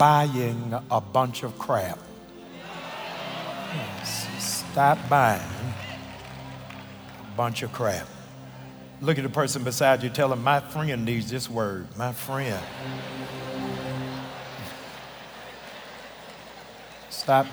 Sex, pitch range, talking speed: male, 115-155 Hz, 90 wpm